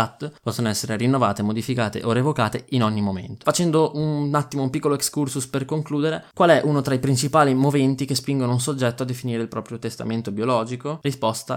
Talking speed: 180 wpm